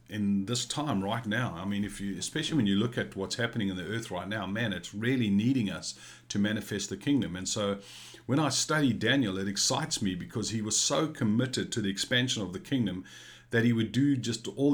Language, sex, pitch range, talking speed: English, male, 95-120 Hz, 230 wpm